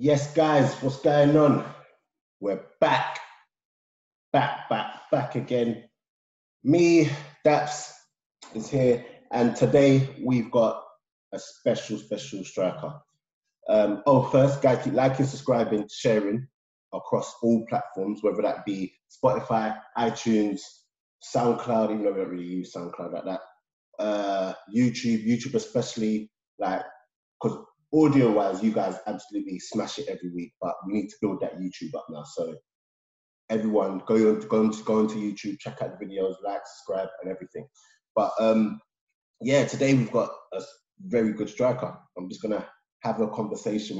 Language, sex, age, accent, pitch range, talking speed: English, male, 20-39, British, 100-135 Hz, 145 wpm